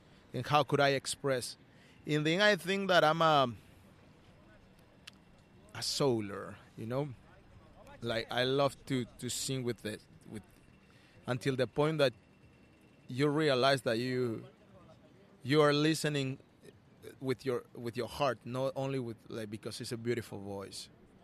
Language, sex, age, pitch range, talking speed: English, male, 30-49, 120-150 Hz, 140 wpm